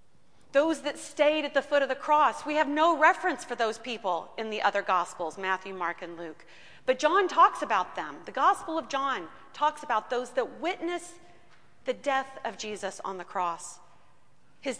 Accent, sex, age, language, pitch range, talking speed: American, female, 40-59, English, 200-295 Hz, 185 wpm